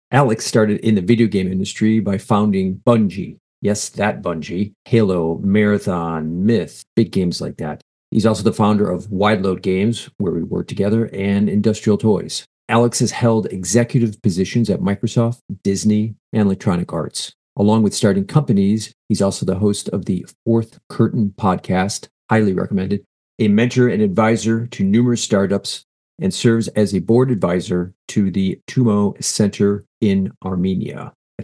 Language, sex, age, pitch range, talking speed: English, male, 50-69, 95-115 Hz, 155 wpm